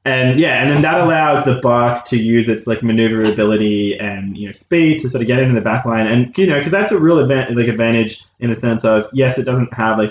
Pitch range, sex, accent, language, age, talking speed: 110-130 Hz, male, Australian, English, 20-39, 260 wpm